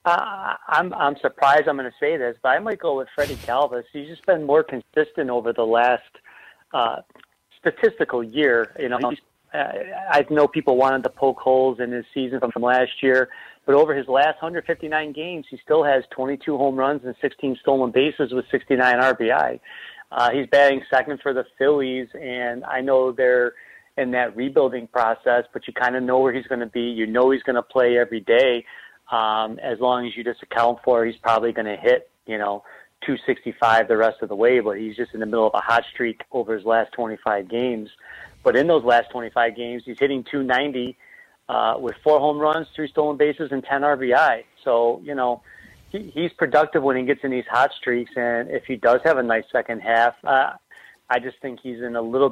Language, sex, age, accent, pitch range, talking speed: English, male, 40-59, American, 115-140 Hz, 210 wpm